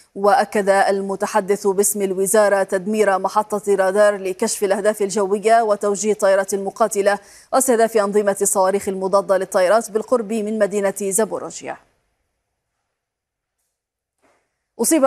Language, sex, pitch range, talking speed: Arabic, female, 195-220 Hz, 90 wpm